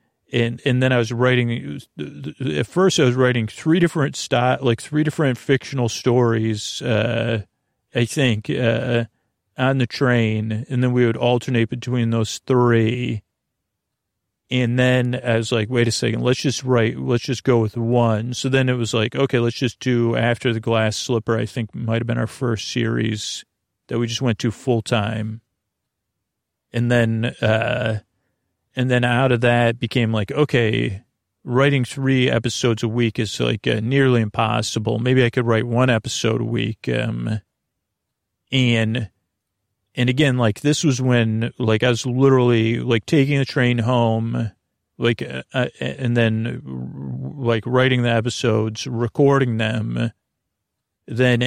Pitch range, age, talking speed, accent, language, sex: 110-125 Hz, 40-59, 160 wpm, American, English, male